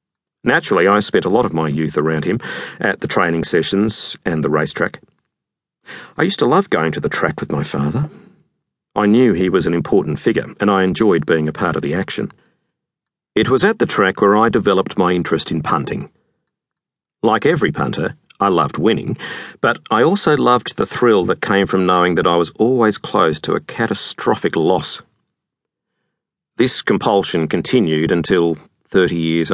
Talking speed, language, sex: 175 wpm, English, male